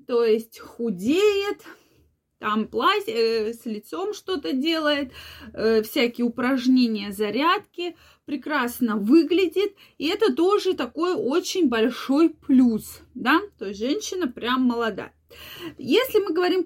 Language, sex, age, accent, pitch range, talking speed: Russian, female, 20-39, native, 245-335 Hz, 110 wpm